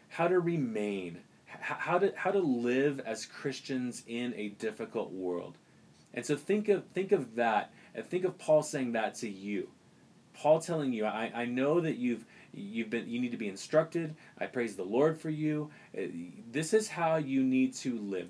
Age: 30-49